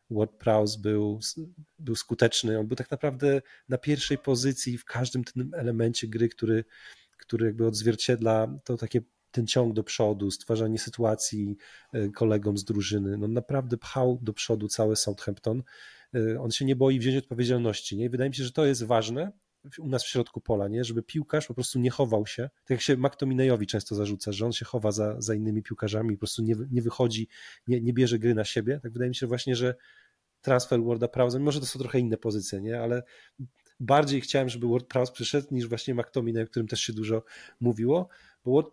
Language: Polish